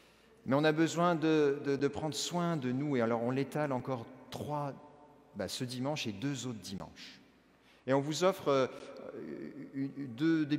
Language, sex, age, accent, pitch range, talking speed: French, male, 40-59, French, 125-170 Hz, 185 wpm